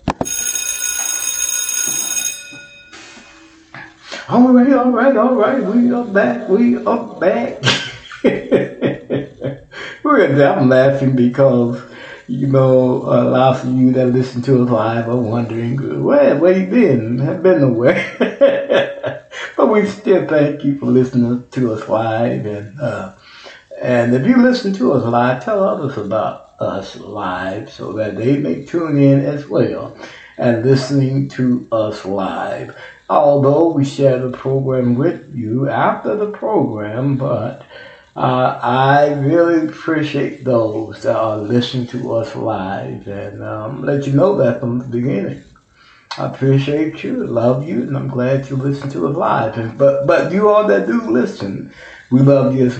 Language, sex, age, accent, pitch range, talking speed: English, male, 60-79, American, 120-155 Hz, 145 wpm